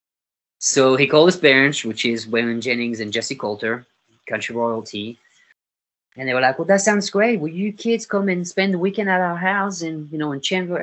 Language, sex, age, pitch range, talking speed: English, male, 30-49, 110-145 Hz, 210 wpm